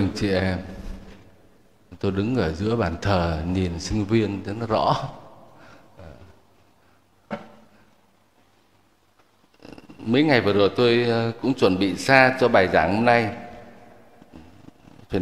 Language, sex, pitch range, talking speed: Vietnamese, male, 95-130 Hz, 115 wpm